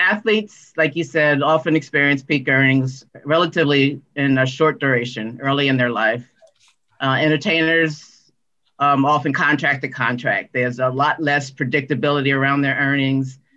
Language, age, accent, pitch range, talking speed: English, 40-59, American, 135-160 Hz, 140 wpm